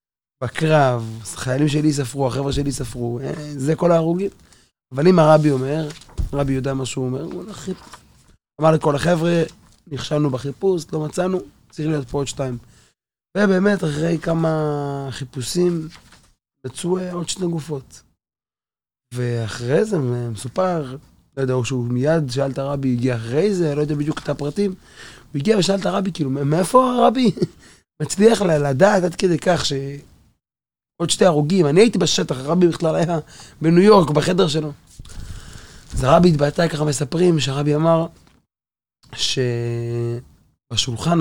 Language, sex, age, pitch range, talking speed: Hebrew, male, 20-39, 125-165 Hz, 140 wpm